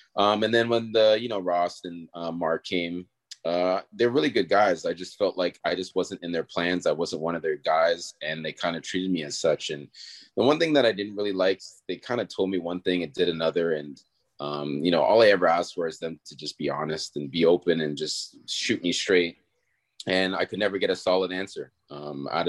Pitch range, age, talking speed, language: 85-95 Hz, 30-49, 250 wpm, English